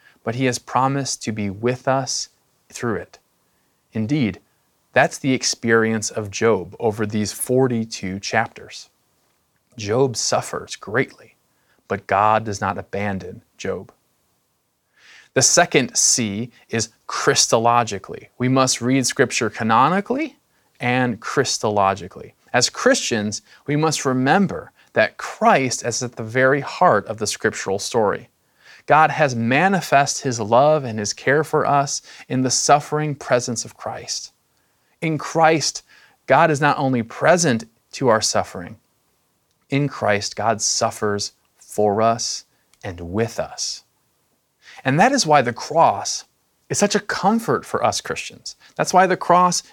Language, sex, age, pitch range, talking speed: English, male, 30-49, 110-145 Hz, 130 wpm